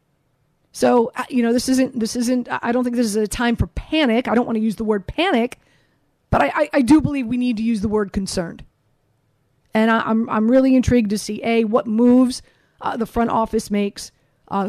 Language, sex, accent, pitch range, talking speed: English, female, American, 190-230 Hz, 220 wpm